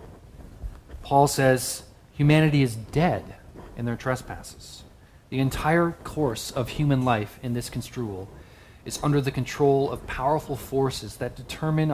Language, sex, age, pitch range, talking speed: English, male, 40-59, 110-140 Hz, 130 wpm